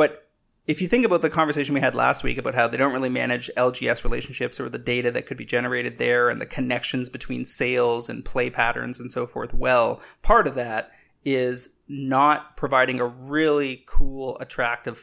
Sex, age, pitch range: male, 30-49, 125-150 Hz